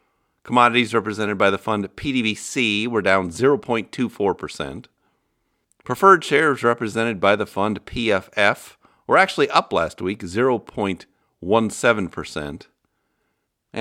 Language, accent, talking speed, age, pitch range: English, American, 95 wpm, 50-69, 90-130 Hz